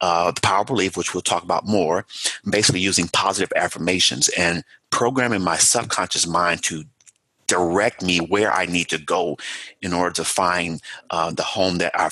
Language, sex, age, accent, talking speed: English, male, 30-49, American, 180 wpm